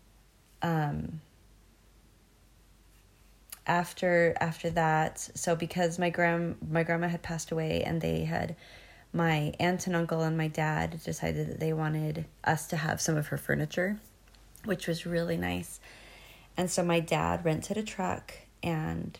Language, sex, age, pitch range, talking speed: English, female, 30-49, 115-170 Hz, 145 wpm